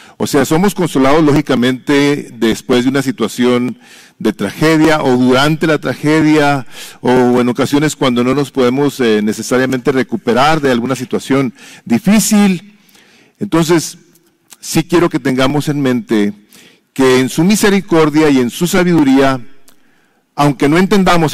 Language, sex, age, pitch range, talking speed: English, male, 50-69, 135-180 Hz, 130 wpm